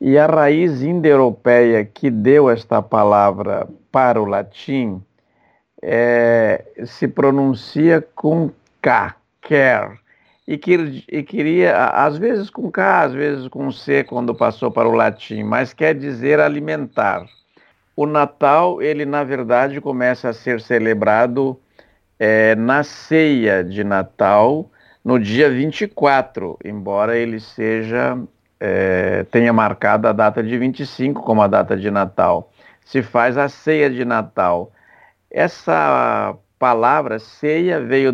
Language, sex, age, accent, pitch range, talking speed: Portuguese, male, 50-69, Brazilian, 110-145 Hz, 125 wpm